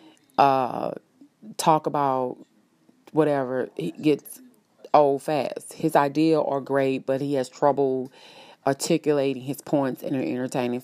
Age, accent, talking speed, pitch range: 30-49, American, 120 wpm, 130-160 Hz